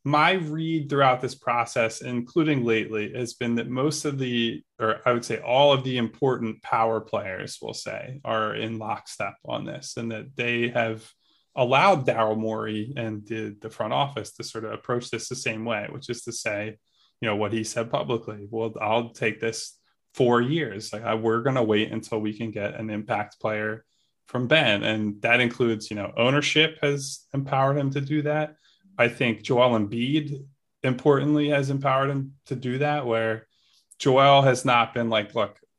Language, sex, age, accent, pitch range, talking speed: English, male, 10-29, American, 110-140 Hz, 185 wpm